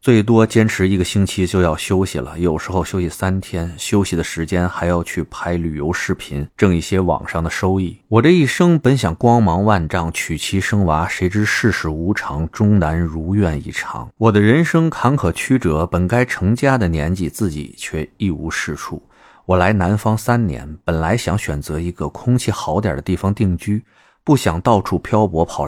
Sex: male